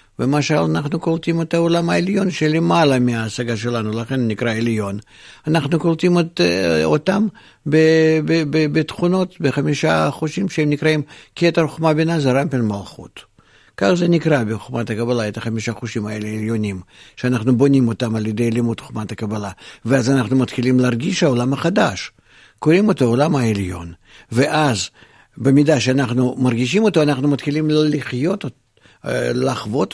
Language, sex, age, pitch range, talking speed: Hebrew, male, 50-69, 115-155 Hz, 140 wpm